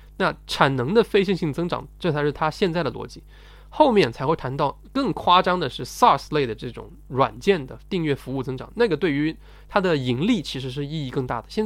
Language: Chinese